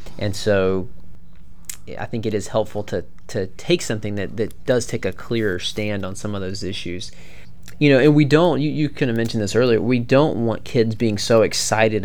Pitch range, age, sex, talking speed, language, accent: 100-120 Hz, 20-39, male, 210 wpm, English, American